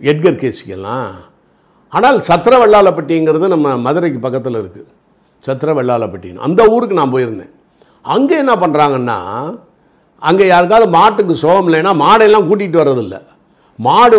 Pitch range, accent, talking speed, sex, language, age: 130-200 Hz, native, 110 wpm, male, Tamil, 50-69